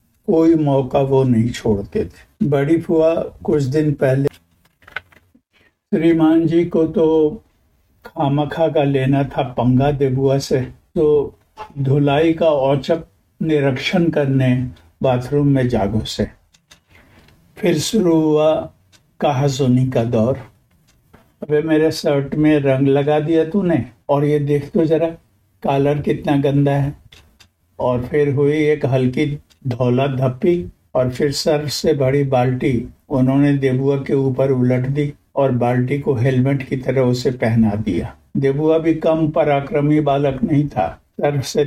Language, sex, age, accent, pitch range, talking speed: Hindi, male, 60-79, native, 125-150 Hz, 130 wpm